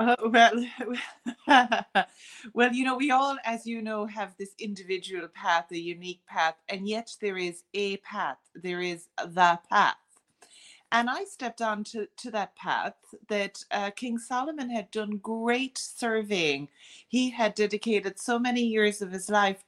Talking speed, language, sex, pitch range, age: 155 wpm, English, female, 180-230 Hz, 30-49